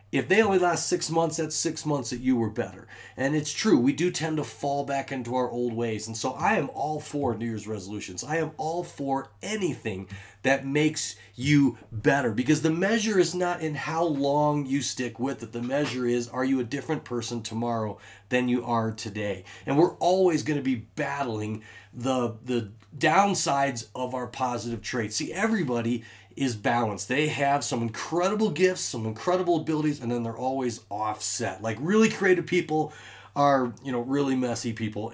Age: 30-49